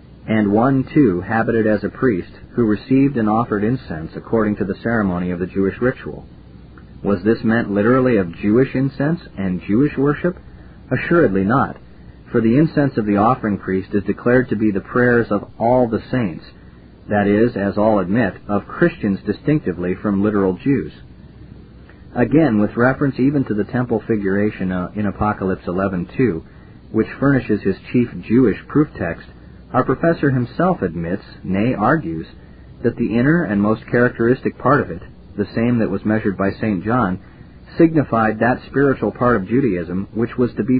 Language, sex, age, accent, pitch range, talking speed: English, male, 40-59, American, 95-125 Hz, 165 wpm